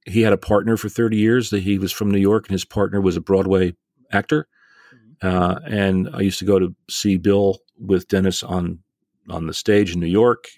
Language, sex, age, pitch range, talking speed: English, male, 40-59, 95-110 Hz, 215 wpm